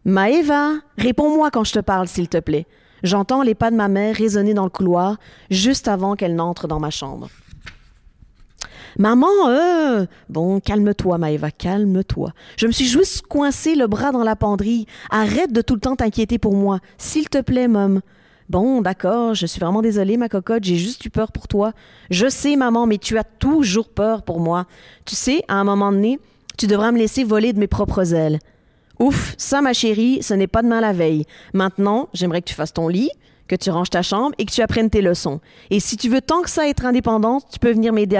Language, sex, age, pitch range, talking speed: French, female, 30-49, 185-235 Hz, 220 wpm